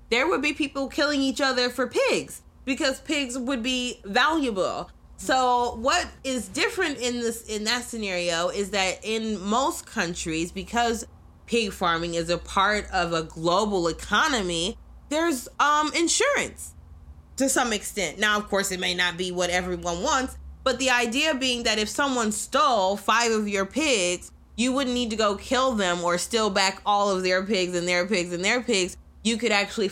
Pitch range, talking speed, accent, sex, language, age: 175-240 Hz, 180 wpm, American, female, English, 20-39